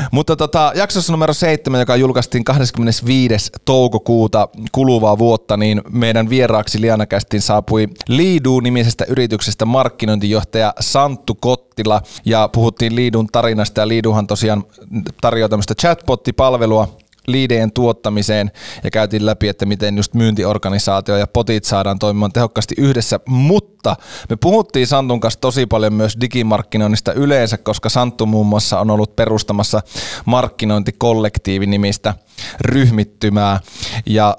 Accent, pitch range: native, 105-125 Hz